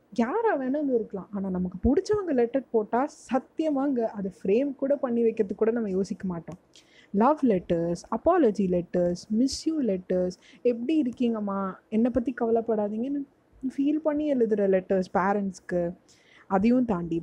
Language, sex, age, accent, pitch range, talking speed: Tamil, female, 20-39, native, 195-275 Hz, 120 wpm